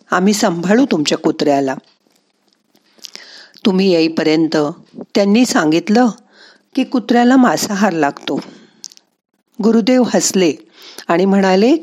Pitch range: 185-245 Hz